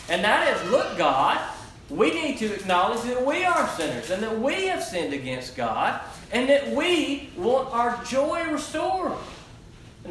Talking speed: 165 wpm